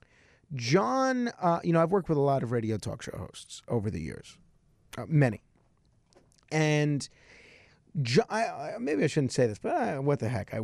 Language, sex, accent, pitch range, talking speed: English, male, American, 125-170 Hz, 175 wpm